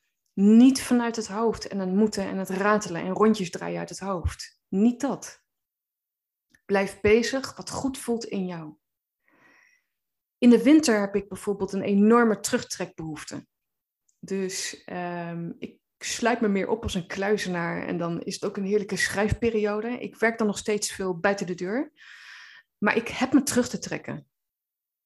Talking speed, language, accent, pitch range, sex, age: 160 wpm, Dutch, Dutch, 185-235 Hz, female, 20-39